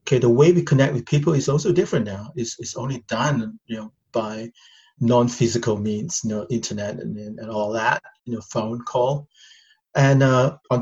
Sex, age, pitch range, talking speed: male, 30-49, 115-140 Hz, 190 wpm